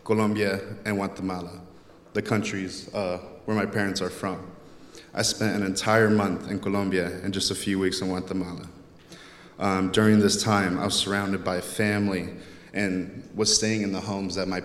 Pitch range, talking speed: 95-105 Hz, 170 wpm